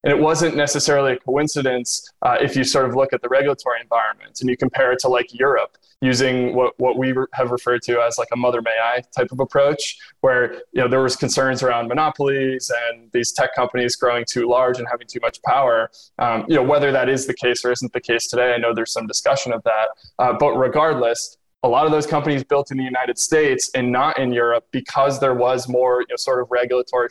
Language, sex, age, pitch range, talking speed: English, male, 20-39, 120-140 Hz, 230 wpm